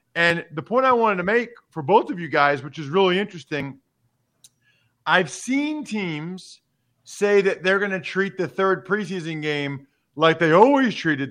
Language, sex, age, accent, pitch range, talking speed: English, male, 40-59, American, 150-205 Hz, 175 wpm